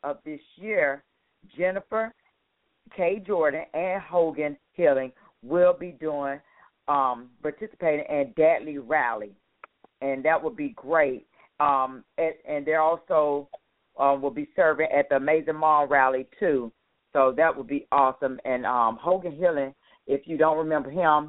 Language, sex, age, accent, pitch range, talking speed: English, female, 50-69, American, 135-165 Hz, 145 wpm